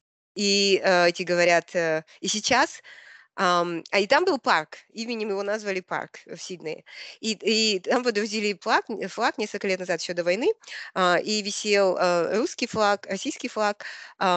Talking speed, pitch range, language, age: 160 wpm, 175-220 Hz, Russian, 20-39